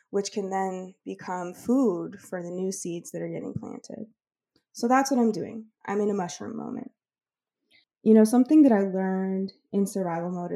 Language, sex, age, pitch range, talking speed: English, female, 20-39, 185-235 Hz, 180 wpm